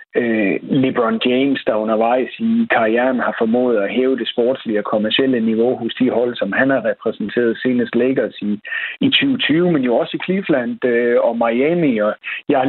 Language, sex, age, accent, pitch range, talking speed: Danish, male, 60-79, native, 120-170 Hz, 180 wpm